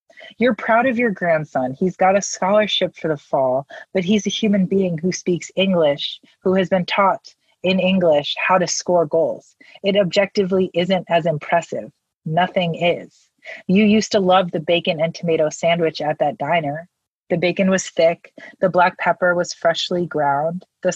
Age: 30-49